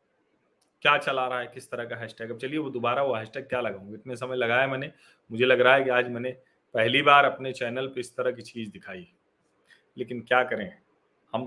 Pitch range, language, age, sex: 110-140 Hz, Hindi, 40-59, male